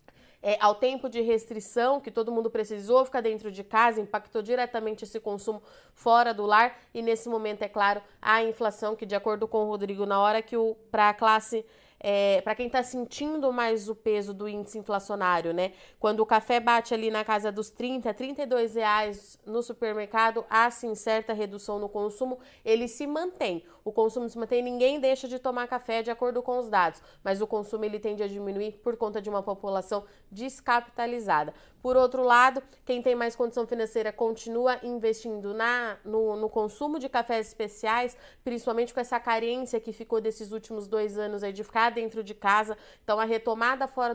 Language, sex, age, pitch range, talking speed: Portuguese, female, 20-39, 215-245 Hz, 180 wpm